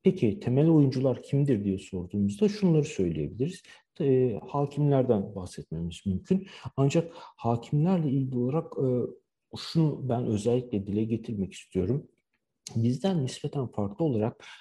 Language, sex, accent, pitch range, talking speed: Turkish, male, native, 105-135 Hz, 110 wpm